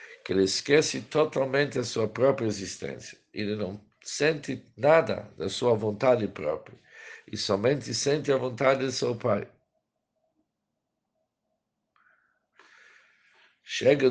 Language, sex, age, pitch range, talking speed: Portuguese, male, 60-79, 105-160 Hz, 105 wpm